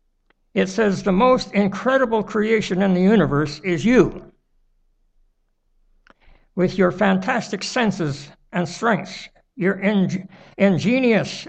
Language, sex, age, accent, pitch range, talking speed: English, male, 60-79, American, 165-210 Hz, 100 wpm